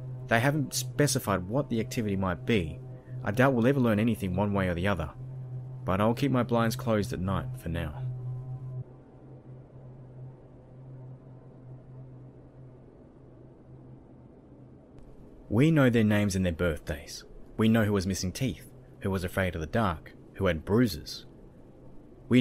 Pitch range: 90-125 Hz